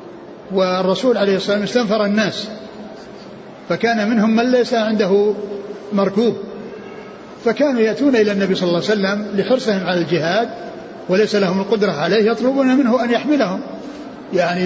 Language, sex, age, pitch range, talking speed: Arabic, male, 60-79, 190-230 Hz, 130 wpm